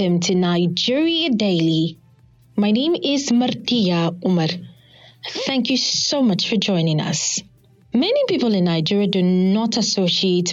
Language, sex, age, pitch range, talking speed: English, female, 30-49, 175-235 Hz, 125 wpm